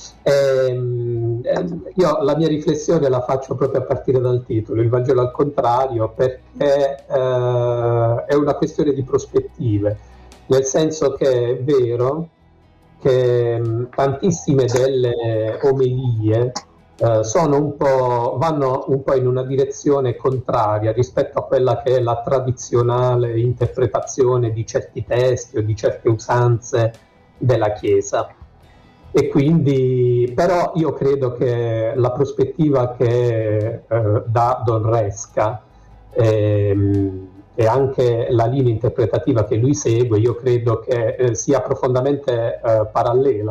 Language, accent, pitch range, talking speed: Italian, native, 115-135 Hz, 120 wpm